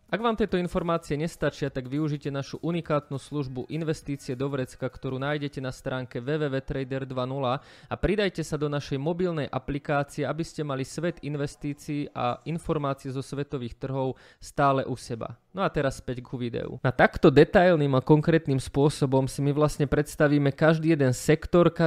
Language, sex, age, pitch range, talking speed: Slovak, male, 20-39, 135-155 Hz, 155 wpm